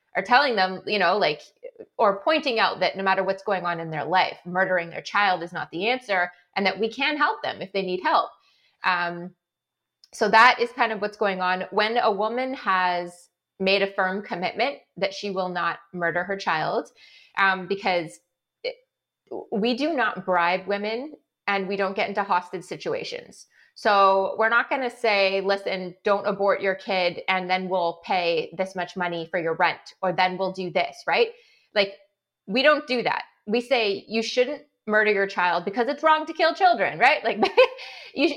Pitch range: 180-235 Hz